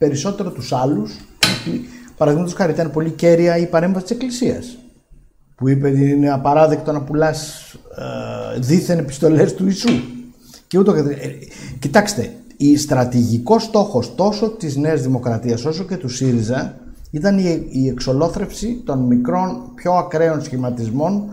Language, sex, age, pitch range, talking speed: Greek, male, 50-69, 125-185 Hz, 135 wpm